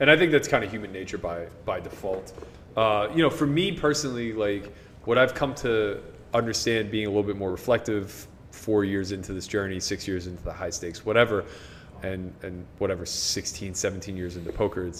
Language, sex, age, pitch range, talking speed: English, male, 20-39, 100-125 Hz, 195 wpm